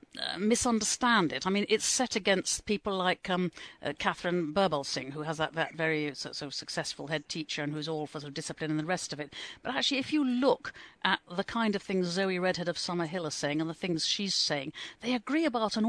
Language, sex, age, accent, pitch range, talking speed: English, female, 50-69, British, 170-215 Hz, 235 wpm